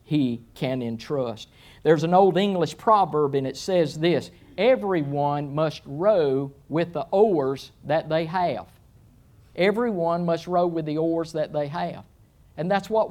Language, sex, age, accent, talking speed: English, male, 50-69, American, 150 wpm